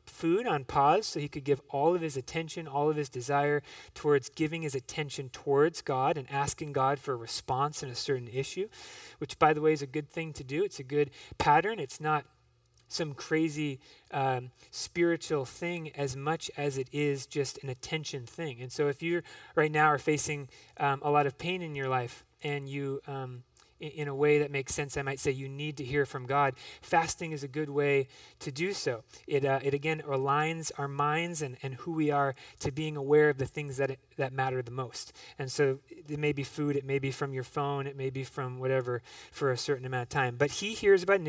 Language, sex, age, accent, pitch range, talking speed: English, male, 30-49, American, 135-155 Hz, 225 wpm